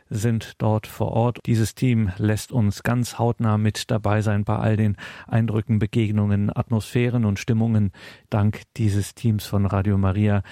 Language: German